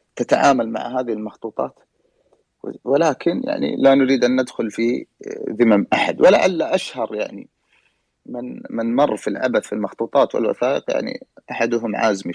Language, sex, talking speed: English, male, 130 wpm